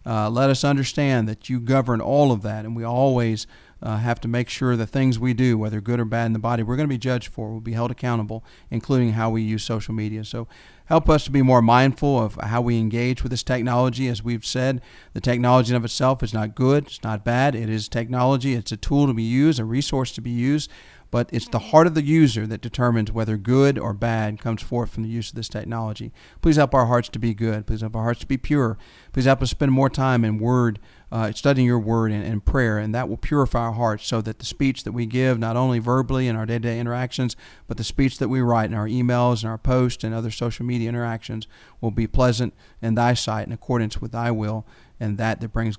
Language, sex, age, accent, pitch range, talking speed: English, male, 40-59, American, 110-130 Hz, 250 wpm